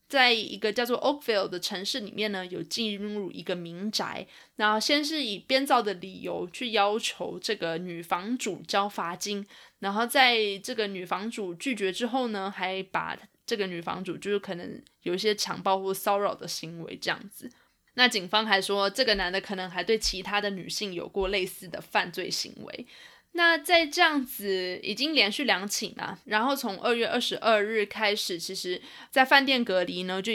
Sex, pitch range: female, 190-235 Hz